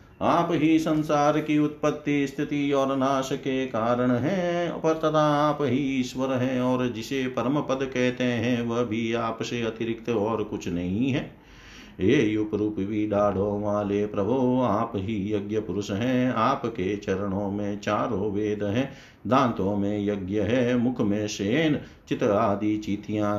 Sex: male